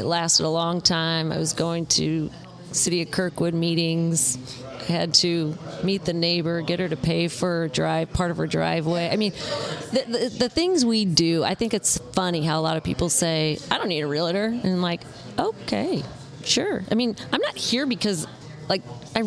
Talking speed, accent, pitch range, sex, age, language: 200 wpm, American, 160-205 Hz, female, 30-49, English